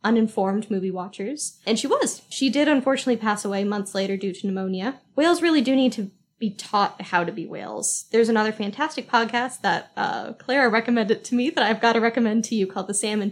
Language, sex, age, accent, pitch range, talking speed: English, female, 10-29, American, 205-250 Hz, 210 wpm